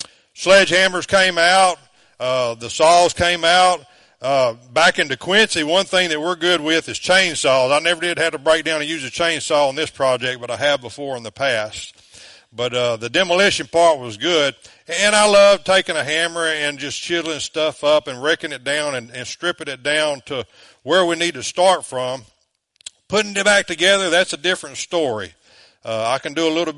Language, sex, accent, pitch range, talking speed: English, male, American, 130-175 Hz, 200 wpm